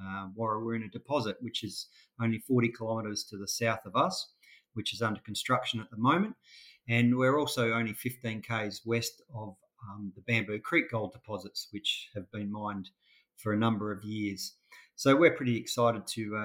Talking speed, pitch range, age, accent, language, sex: 190 wpm, 105-125 Hz, 40-59, Australian, English, male